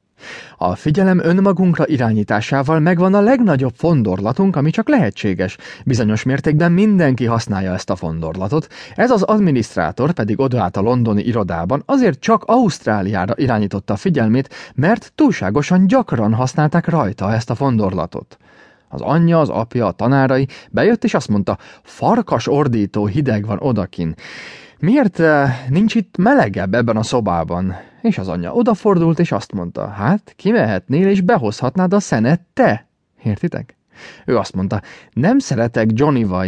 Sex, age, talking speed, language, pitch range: male, 30-49, 135 wpm, English, 105-170 Hz